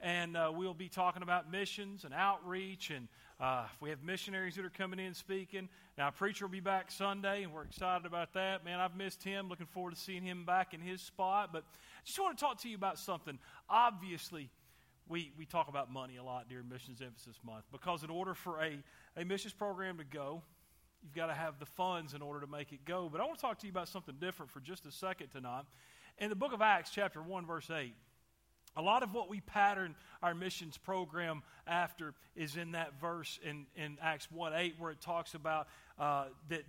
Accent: American